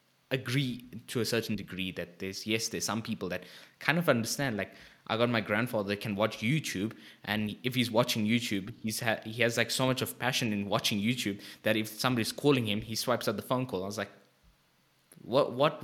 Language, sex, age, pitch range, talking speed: English, male, 20-39, 100-125 Hz, 215 wpm